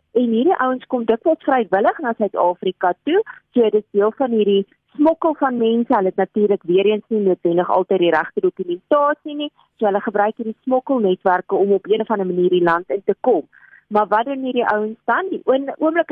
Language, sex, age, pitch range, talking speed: Dutch, female, 40-59, 185-235 Hz, 205 wpm